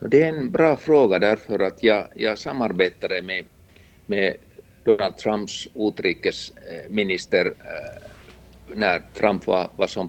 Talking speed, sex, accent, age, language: 120 wpm, male, Finnish, 50-69, Swedish